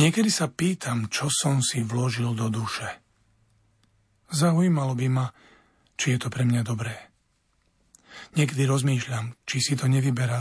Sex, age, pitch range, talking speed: male, 40-59, 120-145 Hz, 140 wpm